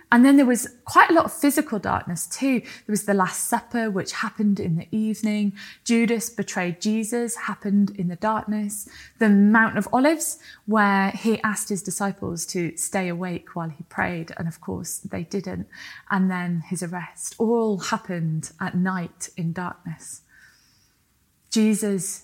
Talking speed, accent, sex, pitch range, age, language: 160 wpm, British, female, 170-220 Hz, 20-39, English